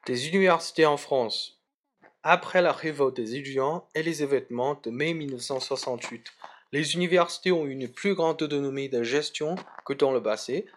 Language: Chinese